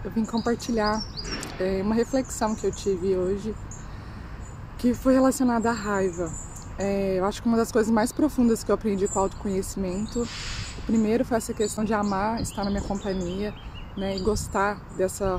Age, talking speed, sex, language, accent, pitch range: 20-39, 175 wpm, female, Portuguese, Brazilian, 195-235 Hz